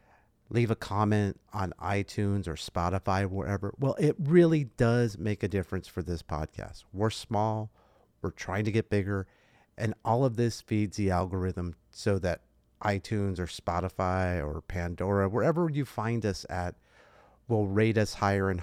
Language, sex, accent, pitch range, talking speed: English, male, American, 100-125 Hz, 160 wpm